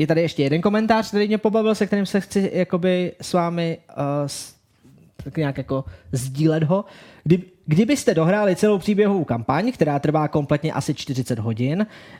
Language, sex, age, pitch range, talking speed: Czech, male, 20-39, 155-225 Hz, 145 wpm